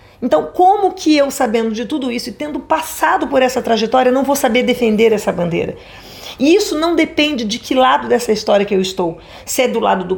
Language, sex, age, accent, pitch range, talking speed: Portuguese, female, 40-59, Brazilian, 205-275 Hz, 220 wpm